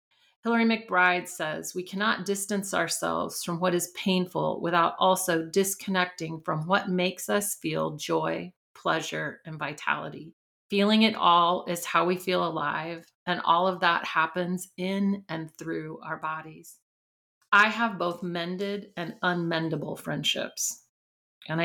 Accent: American